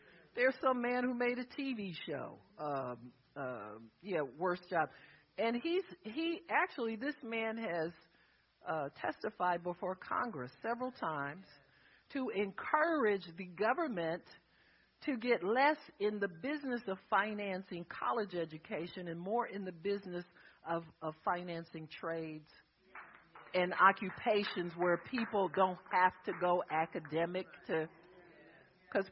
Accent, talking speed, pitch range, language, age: American, 125 wpm, 155-210 Hz, English, 50-69